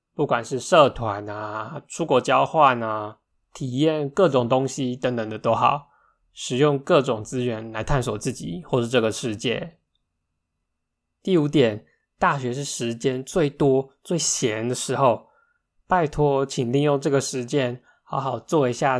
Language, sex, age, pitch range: Chinese, male, 20-39, 110-145 Hz